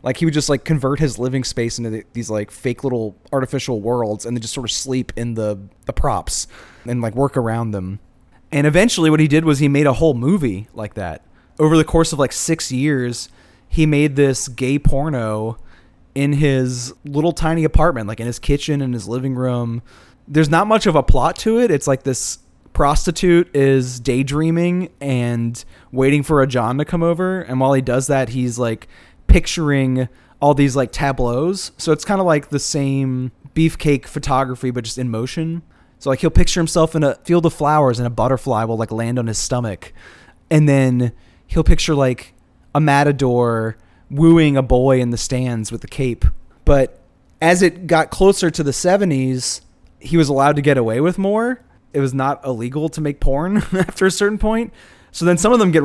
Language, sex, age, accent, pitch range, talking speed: English, male, 20-39, American, 120-155 Hz, 200 wpm